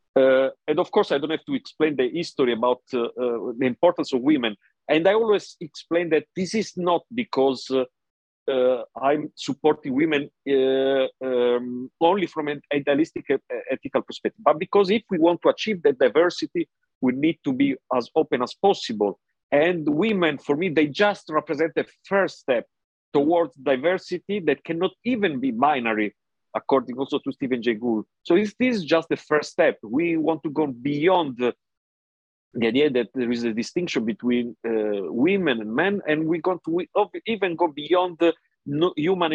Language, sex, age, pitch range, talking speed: Italian, male, 50-69, 125-190 Hz, 175 wpm